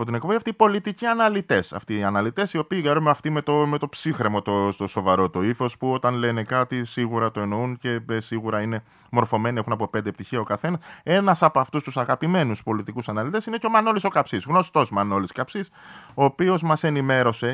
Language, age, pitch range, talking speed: Greek, 20-39, 120-175 Hz, 205 wpm